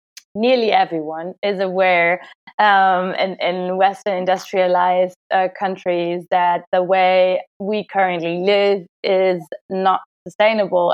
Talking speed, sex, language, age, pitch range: 110 wpm, female, English, 20-39, 180-215 Hz